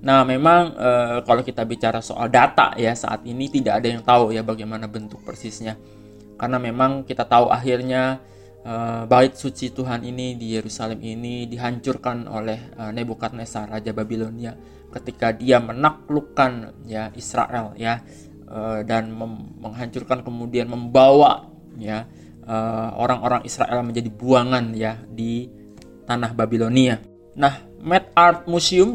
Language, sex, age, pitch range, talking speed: Indonesian, male, 20-39, 115-130 Hz, 135 wpm